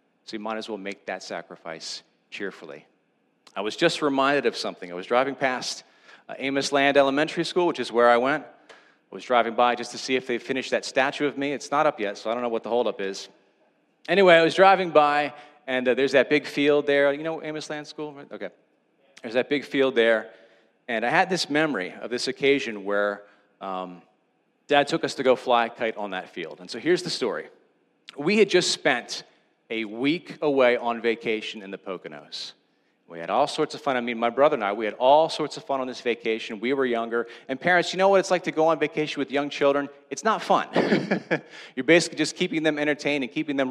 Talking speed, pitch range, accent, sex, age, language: 230 wpm, 120-160 Hz, American, male, 40-59, English